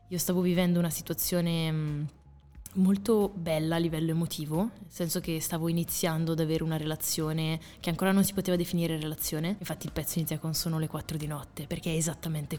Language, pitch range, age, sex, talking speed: Italian, 160-185 Hz, 20-39, female, 185 wpm